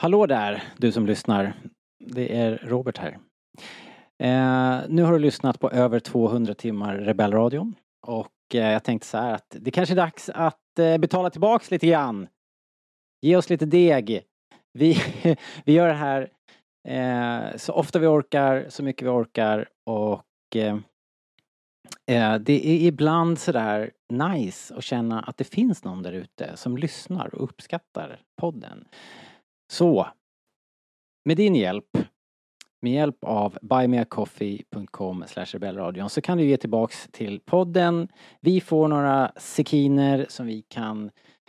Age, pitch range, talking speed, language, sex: 30-49, 110-160 Hz, 140 wpm, Swedish, male